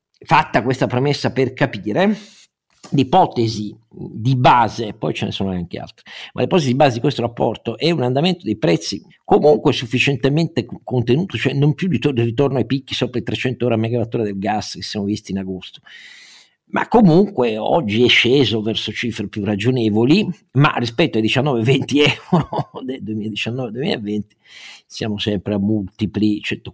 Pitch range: 105-150 Hz